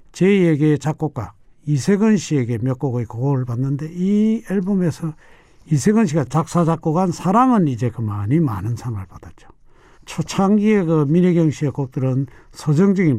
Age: 60-79